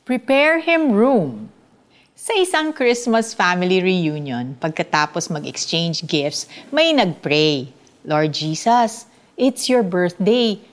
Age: 50-69